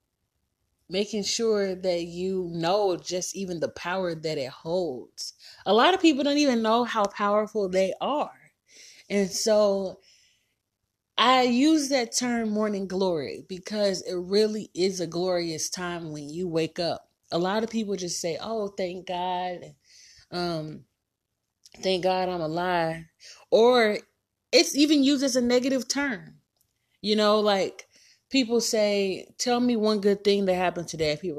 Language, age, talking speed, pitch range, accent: English, 30-49, 150 wpm, 170-220 Hz, American